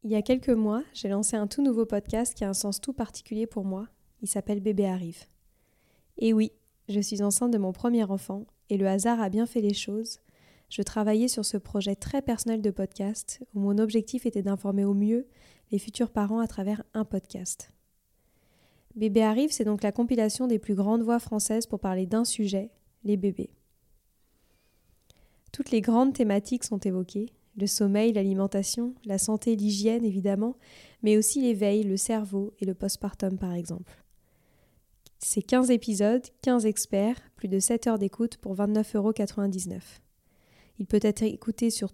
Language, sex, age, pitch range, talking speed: French, female, 10-29, 200-230 Hz, 170 wpm